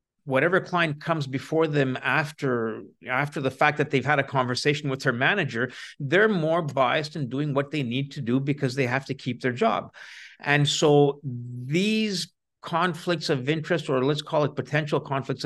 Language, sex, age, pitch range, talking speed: English, male, 50-69, 125-155 Hz, 180 wpm